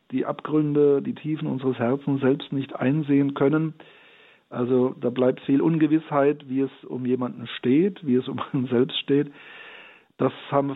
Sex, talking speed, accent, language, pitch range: male, 155 wpm, German, German, 125-150 Hz